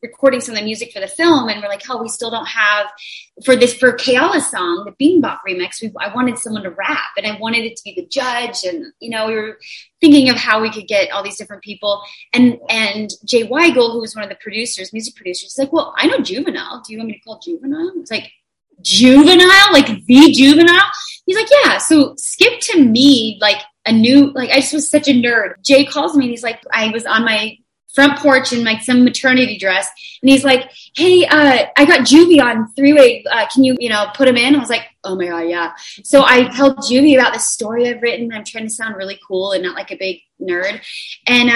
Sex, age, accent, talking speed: female, 30-49, American, 240 wpm